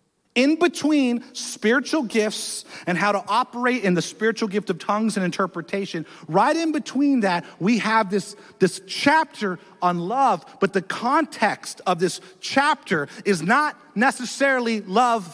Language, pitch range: English, 190-265 Hz